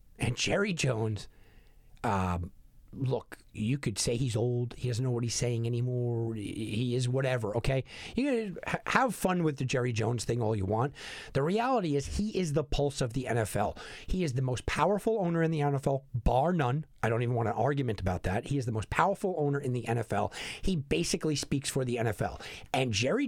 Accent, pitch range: American, 115-150 Hz